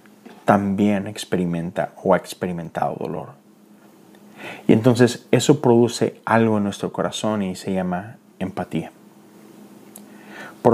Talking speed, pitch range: 105 wpm, 95-115 Hz